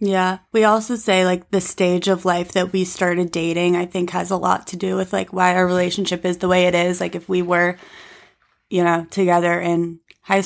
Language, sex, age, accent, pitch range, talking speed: English, female, 20-39, American, 170-185 Hz, 225 wpm